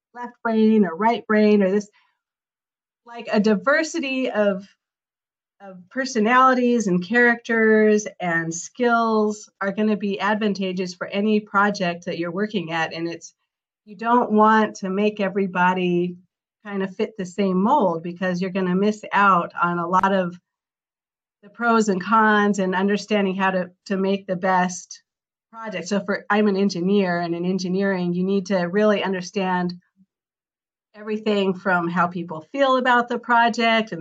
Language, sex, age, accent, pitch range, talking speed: English, female, 40-59, American, 180-215 Hz, 155 wpm